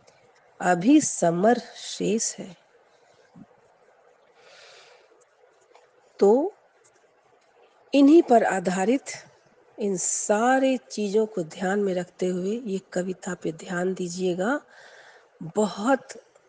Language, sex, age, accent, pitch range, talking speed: Hindi, female, 40-59, native, 200-305 Hz, 80 wpm